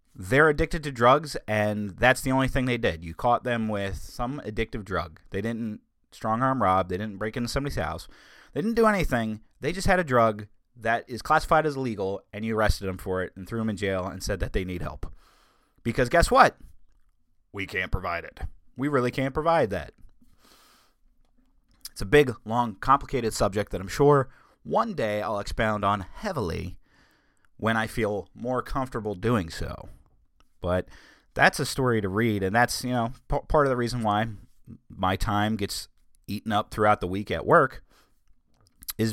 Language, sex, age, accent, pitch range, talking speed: English, male, 30-49, American, 95-130 Hz, 180 wpm